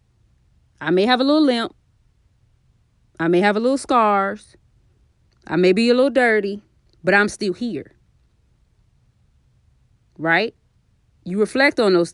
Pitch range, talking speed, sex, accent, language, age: 175-255 Hz, 135 wpm, female, American, English, 20-39